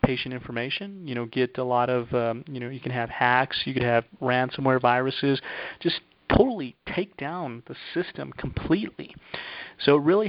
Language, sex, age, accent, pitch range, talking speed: English, male, 30-49, American, 120-135 Hz, 175 wpm